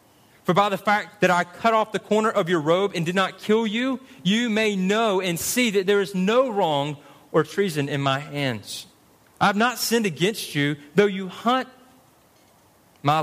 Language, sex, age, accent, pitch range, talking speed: English, male, 30-49, American, 145-200 Hz, 195 wpm